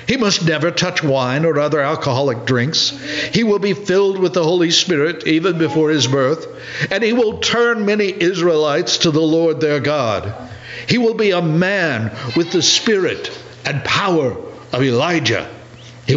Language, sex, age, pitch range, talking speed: English, male, 60-79, 120-160 Hz, 165 wpm